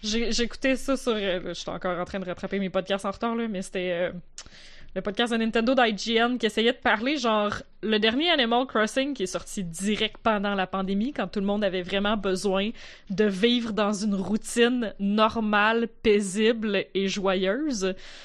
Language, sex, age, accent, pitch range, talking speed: French, female, 20-39, Canadian, 195-245 Hz, 185 wpm